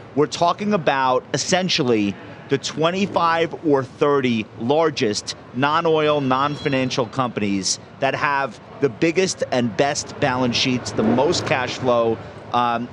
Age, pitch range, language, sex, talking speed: 30-49, 125-170 Hz, English, male, 115 wpm